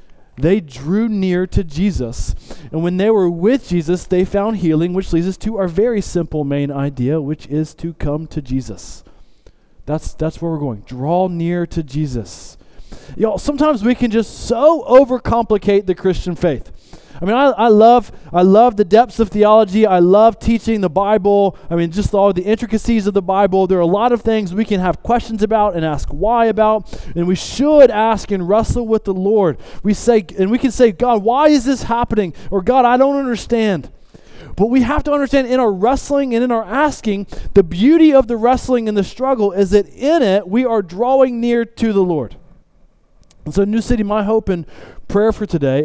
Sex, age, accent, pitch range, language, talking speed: male, 20-39, American, 175-240 Hz, English, 200 wpm